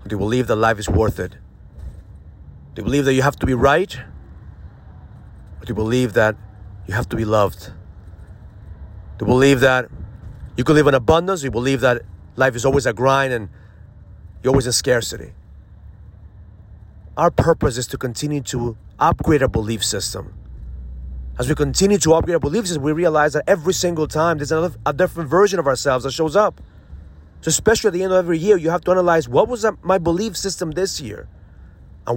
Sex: male